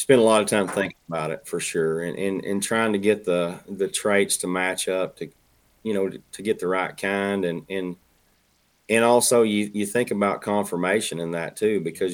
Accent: American